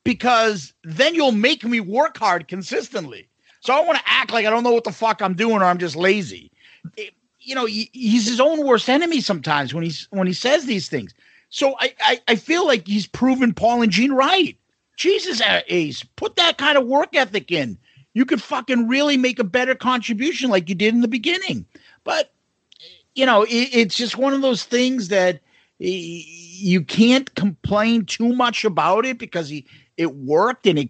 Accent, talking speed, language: American, 200 wpm, English